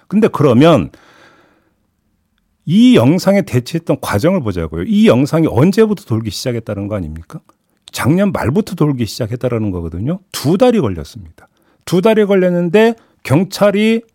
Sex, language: male, Korean